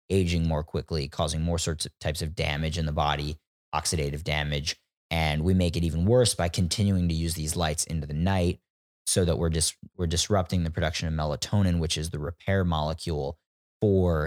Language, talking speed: English, 200 wpm